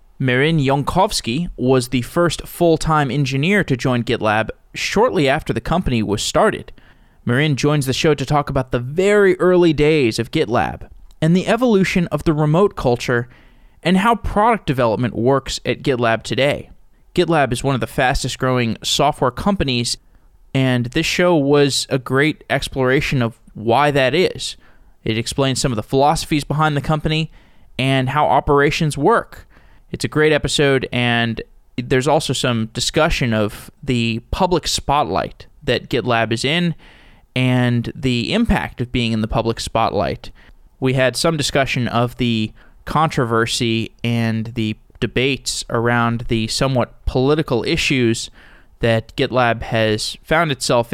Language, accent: English, American